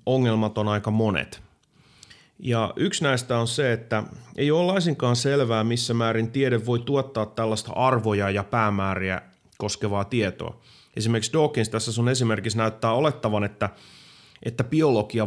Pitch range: 105-125 Hz